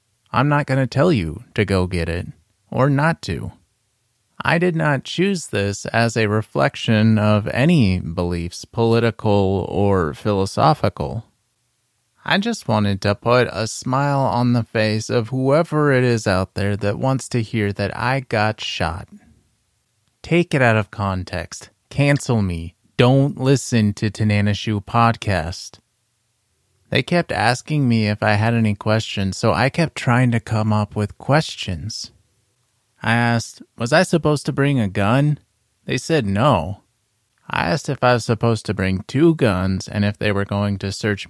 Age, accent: 30-49, American